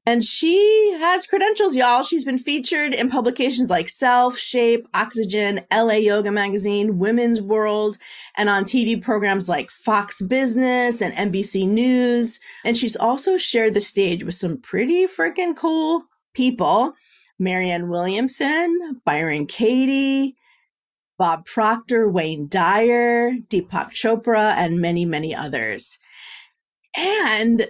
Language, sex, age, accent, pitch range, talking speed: English, female, 40-59, American, 185-250 Hz, 120 wpm